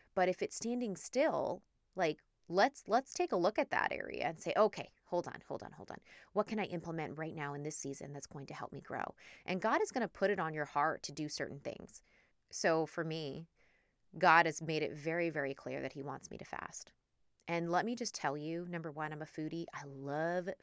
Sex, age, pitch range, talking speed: female, 20-39, 155-195 Hz, 235 wpm